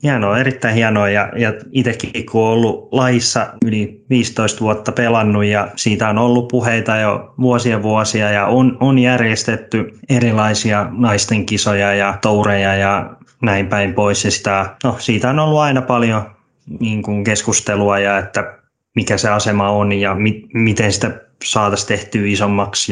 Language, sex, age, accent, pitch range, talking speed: Finnish, male, 20-39, native, 105-120 Hz, 160 wpm